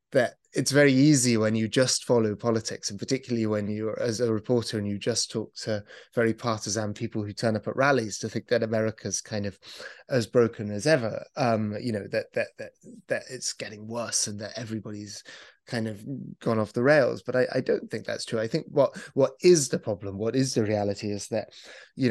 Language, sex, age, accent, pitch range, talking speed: English, male, 20-39, British, 105-125 Hz, 215 wpm